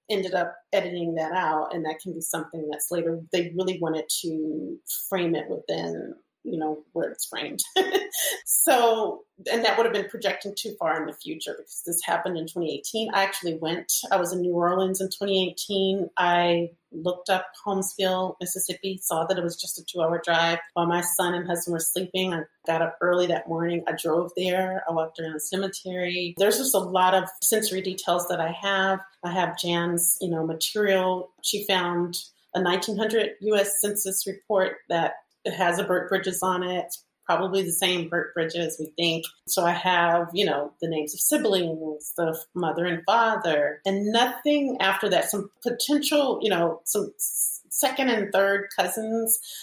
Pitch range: 170-195 Hz